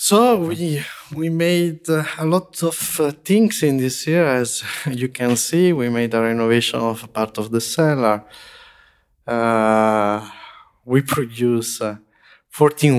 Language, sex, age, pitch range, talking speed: English, male, 20-39, 110-140 Hz, 150 wpm